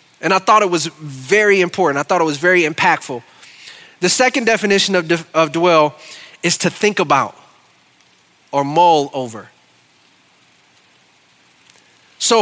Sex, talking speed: male, 130 wpm